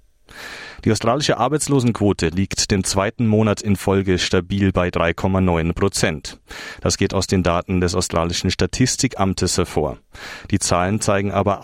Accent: German